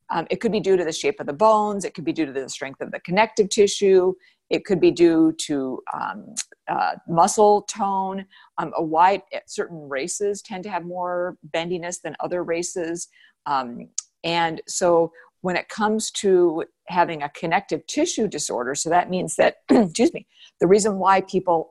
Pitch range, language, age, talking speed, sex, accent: 155-195 Hz, English, 50-69, 180 wpm, female, American